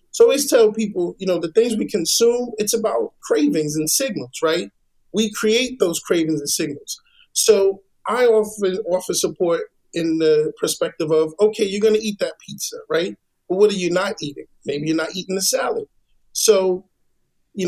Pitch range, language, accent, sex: 170-230 Hz, English, American, male